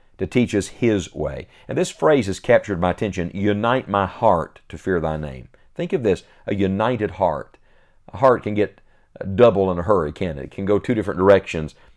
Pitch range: 90-110 Hz